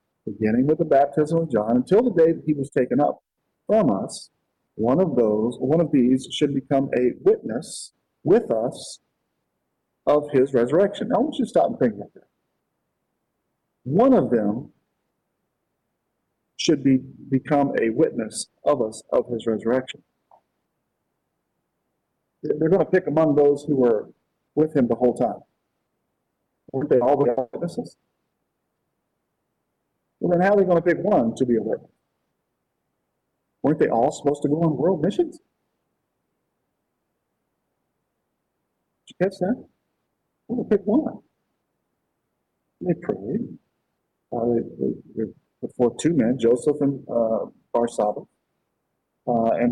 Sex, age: male, 50-69